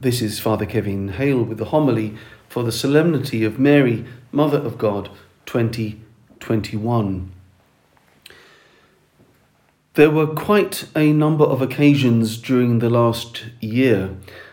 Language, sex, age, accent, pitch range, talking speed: English, male, 40-59, British, 105-130 Hz, 115 wpm